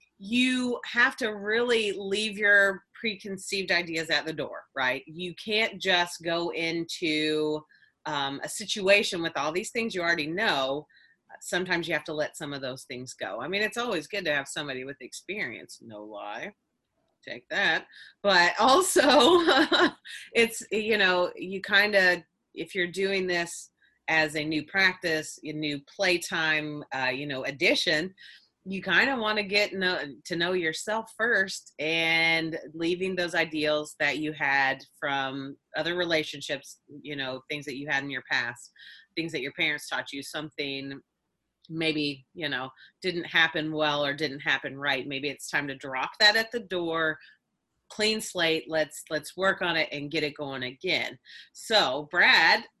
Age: 30-49